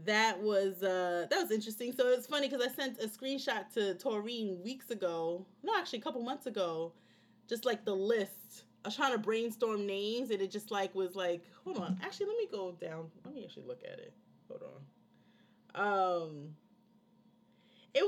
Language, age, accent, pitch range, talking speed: English, 30-49, American, 180-250 Hz, 190 wpm